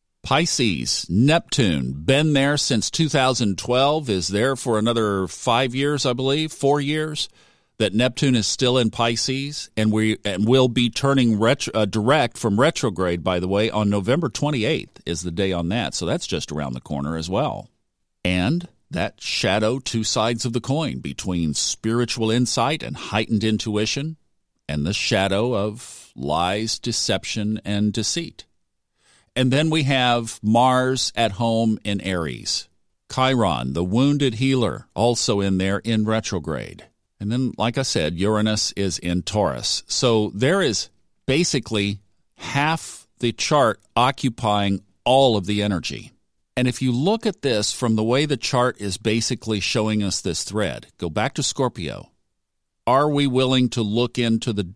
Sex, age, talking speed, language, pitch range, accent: male, 50-69, 155 wpm, English, 100-130 Hz, American